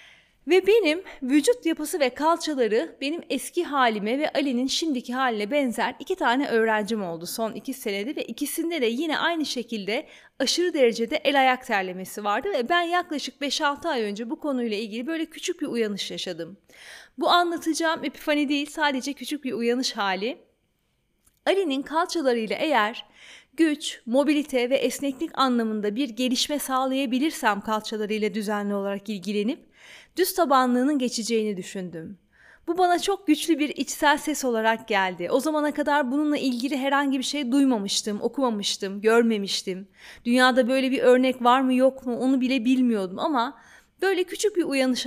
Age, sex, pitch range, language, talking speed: 30-49, female, 225-300 Hz, Turkish, 150 wpm